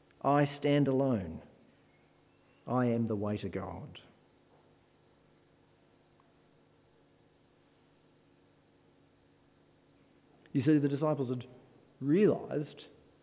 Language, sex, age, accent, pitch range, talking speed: English, male, 50-69, Australian, 120-155 Hz, 70 wpm